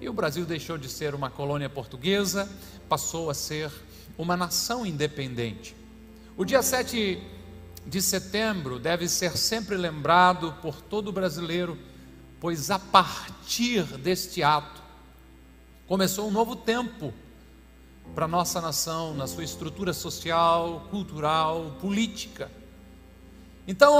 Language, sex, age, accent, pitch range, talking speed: Portuguese, male, 50-69, Brazilian, 145-210 Hz, 120 wpm